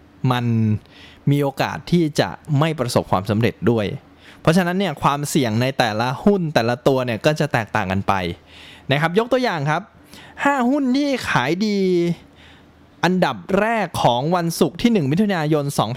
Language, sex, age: Thai, male, 20-39